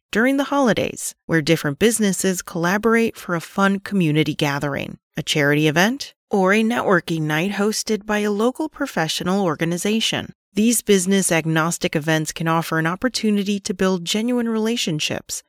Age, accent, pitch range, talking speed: 30-49, American, 165-225 Hz, 145 wpm